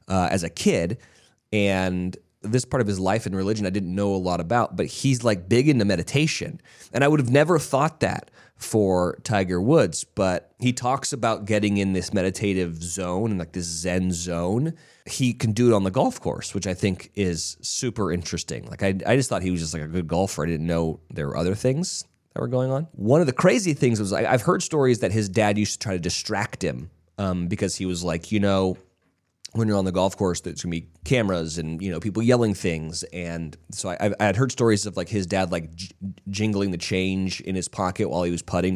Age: 30-49